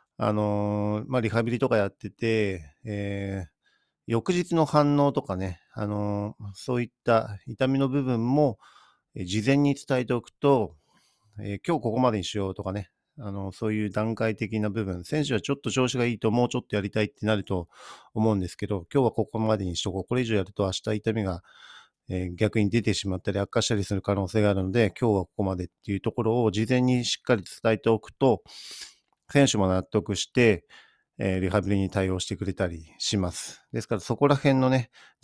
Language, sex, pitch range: Japanese, male, 100-120 Hz